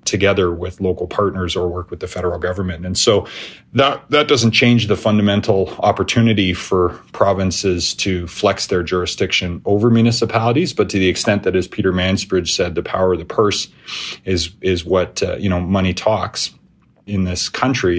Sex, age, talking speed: male, 30-49, 175 wpm